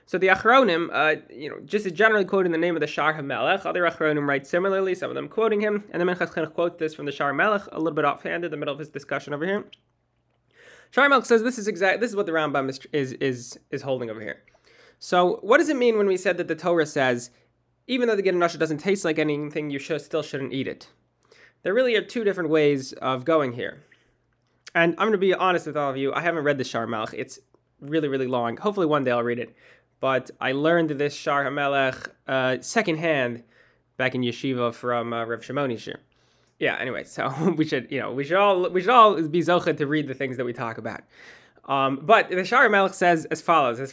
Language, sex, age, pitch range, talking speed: English, male, 20-39, 135-190 Hz, 240 wpm